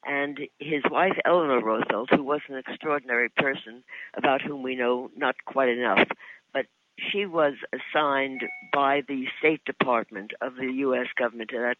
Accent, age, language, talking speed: American, 60-79, English, 160 wpm